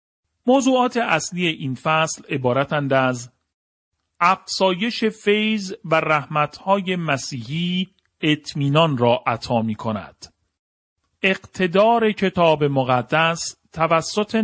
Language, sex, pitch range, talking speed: Persian, male, 130-170 Hz, 85 wpm